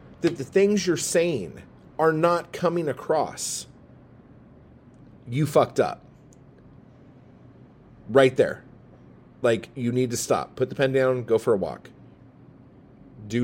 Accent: American